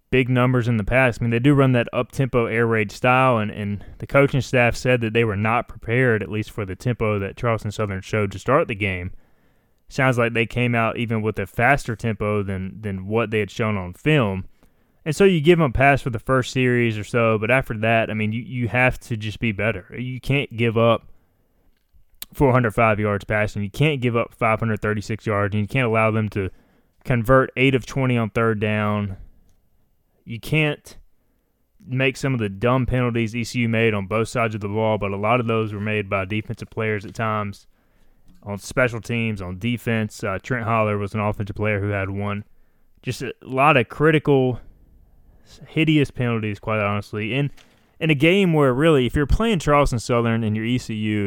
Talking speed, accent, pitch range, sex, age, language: 205 wpm, American, 105-125 Hz, male, 20-39, English